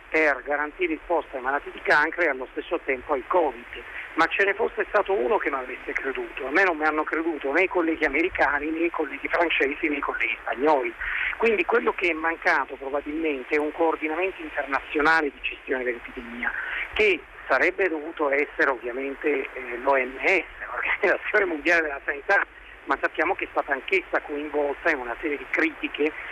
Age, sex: 50-69, male